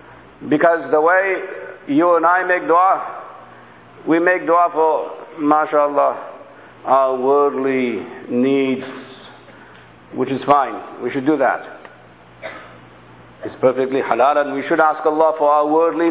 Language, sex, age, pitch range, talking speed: English, male, 50-69, 150-195 Hz, 125 wpm